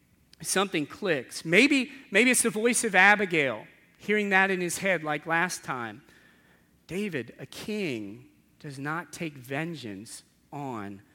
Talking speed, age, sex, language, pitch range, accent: 135 wpm, 40-59, male, English, 135-195 Hz, American